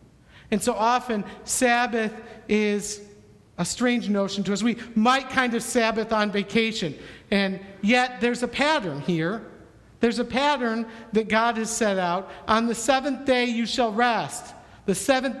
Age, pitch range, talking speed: 50-69, 215-255 Hz, 155 wpm